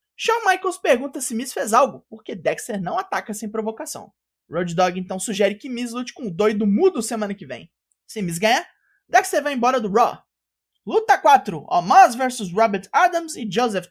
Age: 20-39